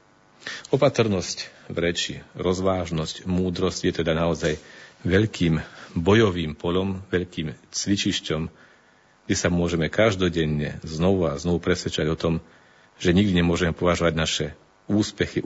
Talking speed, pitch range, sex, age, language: 115 wpm, 80-100 Hz, male, 40-59, Slovak